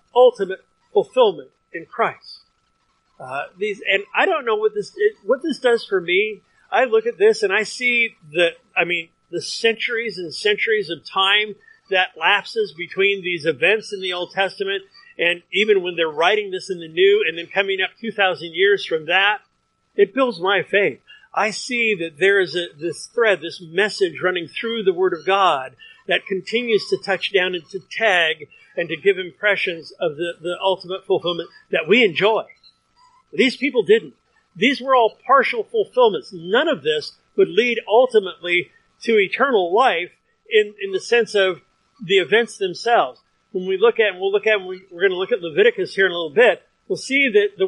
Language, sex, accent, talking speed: English, male, American, 190 wpm